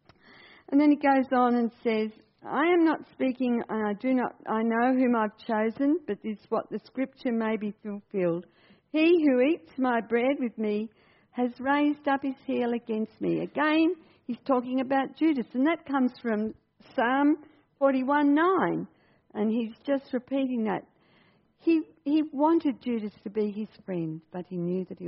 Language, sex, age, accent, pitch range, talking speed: English, female, 60-79, Australian, 190-265 Hz, 175 wpm